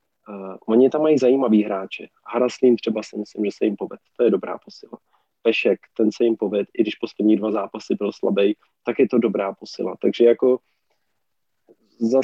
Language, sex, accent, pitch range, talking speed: Czech, male, native, 105-125 Hz, 180 wpm